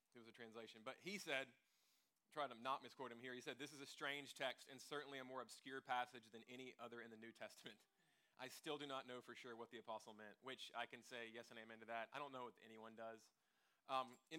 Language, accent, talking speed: English, American, 250 wpm